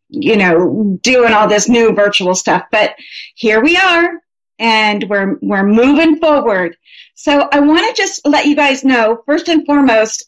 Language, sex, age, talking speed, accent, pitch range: English, female, 40-59, 170 wpm, American, 235-295 Hz